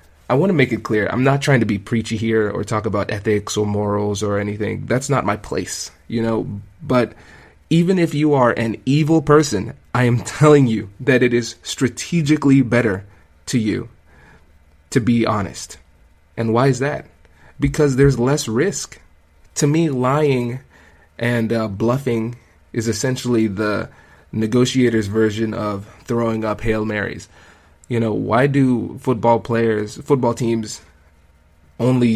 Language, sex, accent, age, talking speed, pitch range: English, male, American, 20-39, 155 wpm, 105-125 Hz